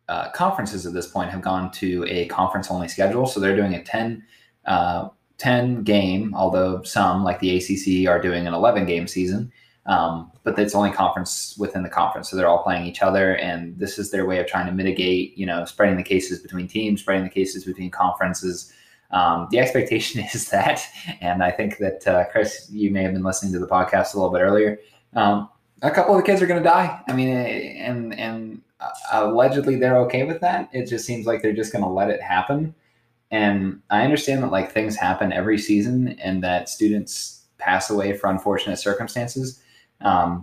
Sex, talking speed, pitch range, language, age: male, 205 wpm, 90-110 Hz, English, 20-39